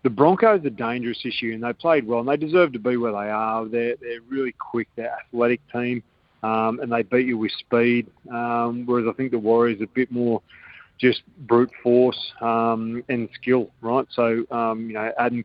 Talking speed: 210 wpm